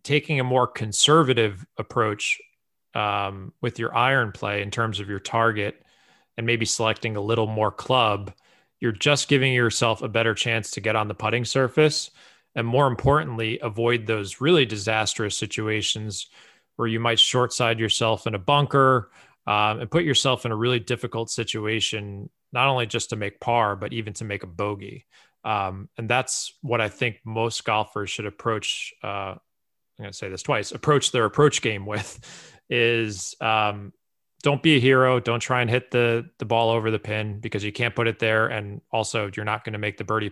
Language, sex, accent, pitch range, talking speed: English, male, American, 105-120 Hz, 190 wpm